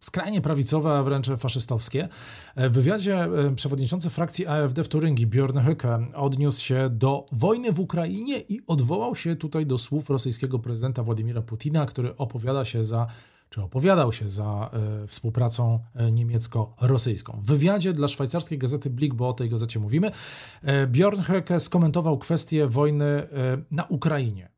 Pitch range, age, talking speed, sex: 120-160 Hz, 40-59, 140 wpm, male